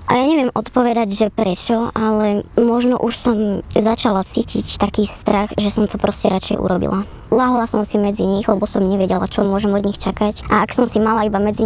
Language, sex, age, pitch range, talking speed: Slovak, male, 20-39, 200-225 Hz, 205 wpm